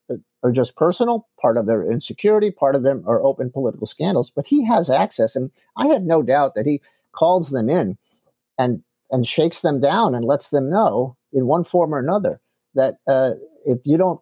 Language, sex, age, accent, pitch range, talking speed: English, male, 50-69, American, 125-175 Hz, 200 wpm